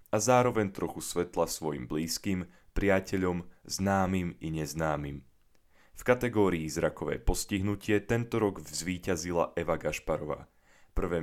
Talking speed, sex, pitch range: 105 wpm, male, 80-105 Hz